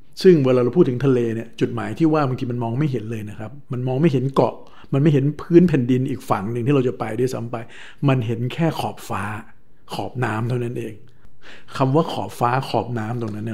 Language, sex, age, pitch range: Thai, male, 60-79, 115-140 Hz